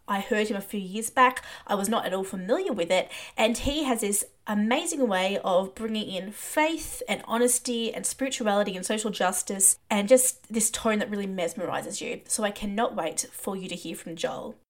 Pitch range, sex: 195-250 Hz, female